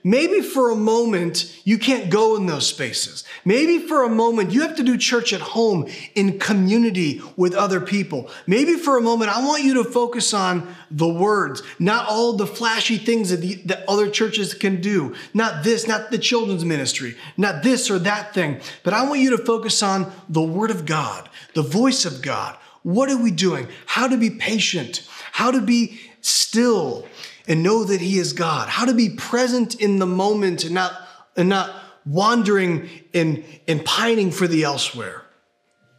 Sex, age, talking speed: male, 30-49, 185 wpm